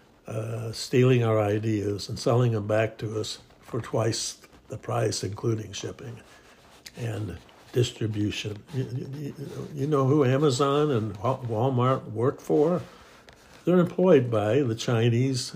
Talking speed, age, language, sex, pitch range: 125 wpm, 60-79, English, male, 110-135 Hz